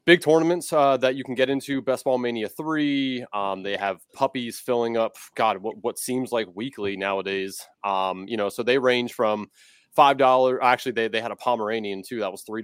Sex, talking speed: male, 210 wpm